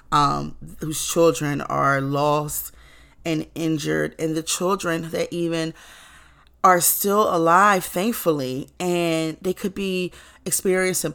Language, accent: English, American